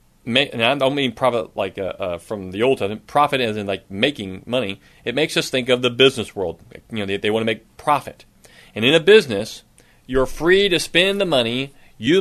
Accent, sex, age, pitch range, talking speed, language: American, male, 40-59, 120-190 Hz, 215 wpm, English